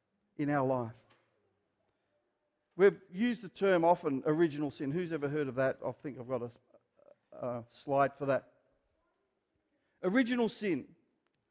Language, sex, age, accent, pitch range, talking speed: English, male, 50-69, Australian, 180-250 Hz, 135 wpm